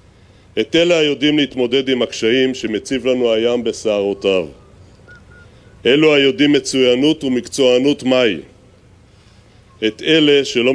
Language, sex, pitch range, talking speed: Hebrew, male, 105-140 Hz, 100 wpm